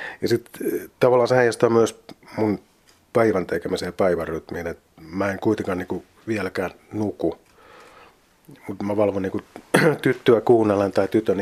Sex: male